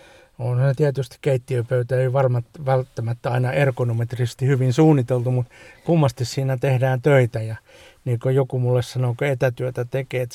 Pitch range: 120-145 Hz